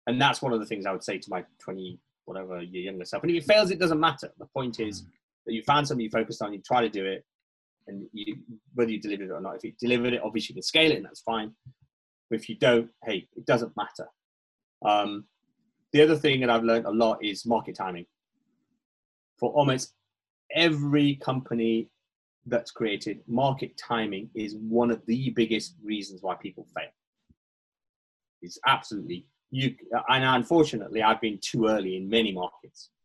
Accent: British